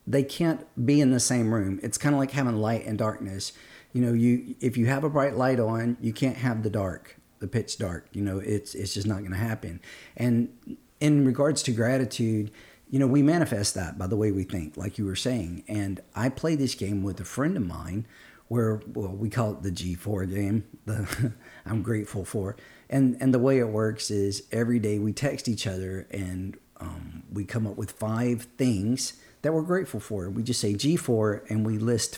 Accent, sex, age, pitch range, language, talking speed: American, male, 50-69, 100-130 Hz, English, 220 wpm